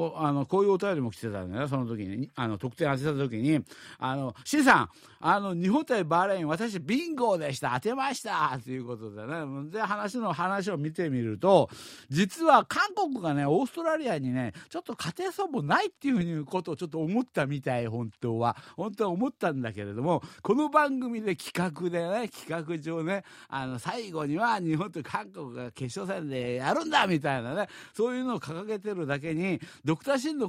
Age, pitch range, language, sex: 50-69, 140-210 Hz, Japanese, male